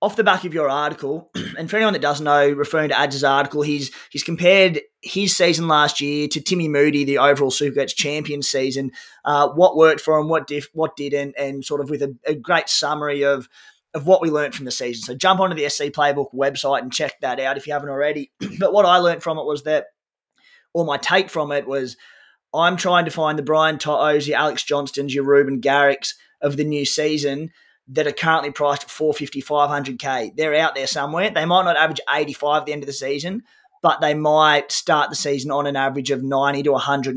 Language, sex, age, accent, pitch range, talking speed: English, male, 20-39, Australian, 140-160 Hz, 225 wpm